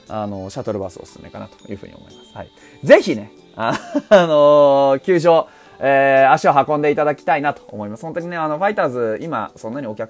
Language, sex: Japanese, male